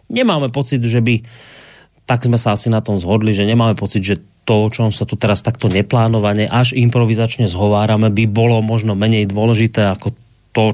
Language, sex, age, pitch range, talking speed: Slovak, male, 30-49, 110-135 Hz, 195 wpm